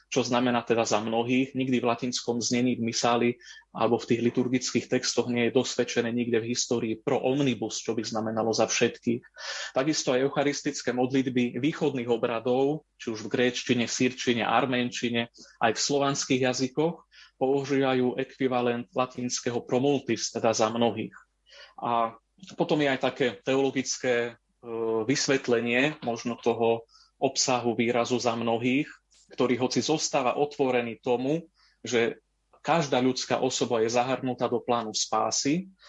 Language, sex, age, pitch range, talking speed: Slovak, male, 30-49, 120-140 Hz, 130 wpm